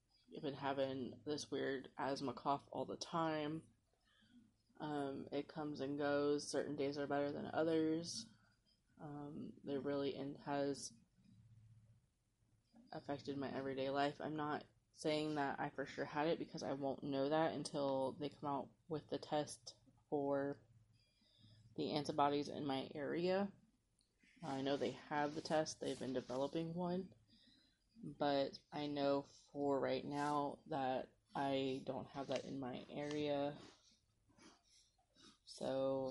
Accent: American